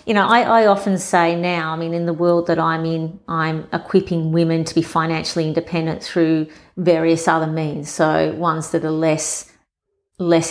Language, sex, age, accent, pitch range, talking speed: English, female, 40-59, Australian, 160-185 Hz, 185 wpm